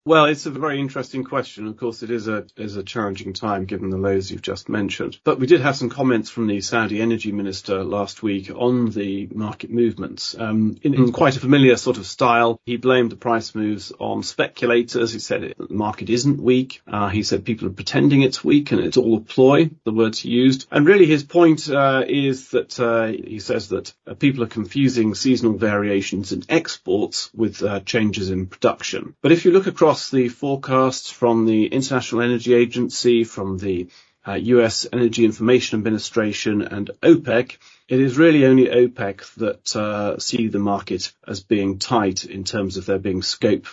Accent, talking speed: British, 195 wpm